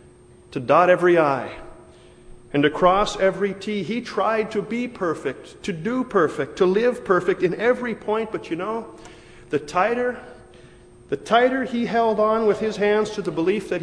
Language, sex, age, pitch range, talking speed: English, male, 40-59, 175-220 Hz, 175 wpm